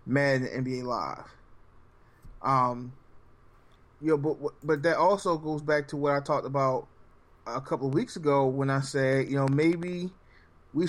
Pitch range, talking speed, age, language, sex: 135-165 Hz, 160 wpm, 20-39, English, male